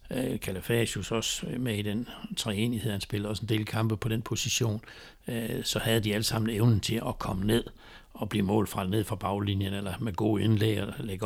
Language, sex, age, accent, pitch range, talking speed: Danish, male, 60-79, native, 105-120 Hz, 205 wpm